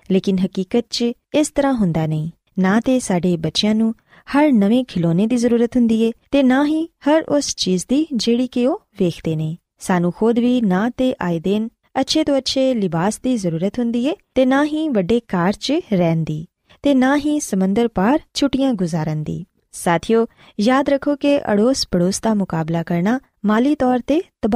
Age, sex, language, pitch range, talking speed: 20-39, female, Punjabi, 180-265 Hz, 105 wpm